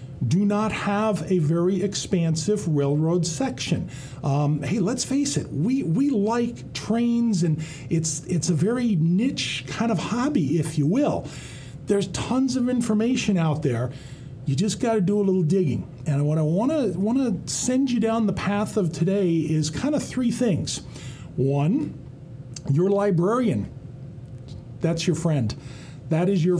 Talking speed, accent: 155 wpm, American